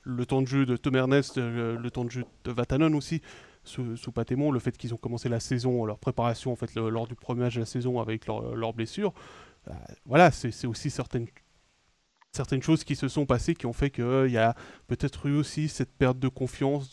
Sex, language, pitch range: male, French, 115-135 Hz